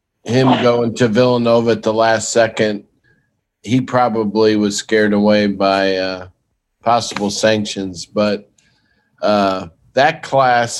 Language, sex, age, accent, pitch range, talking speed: English, male, 50-69, American, 100-115 Hz, 115 wpm